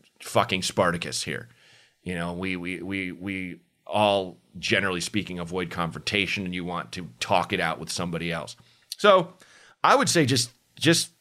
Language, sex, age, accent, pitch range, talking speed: English, male, 30-49, American, 90-115 Hz, 160 wpm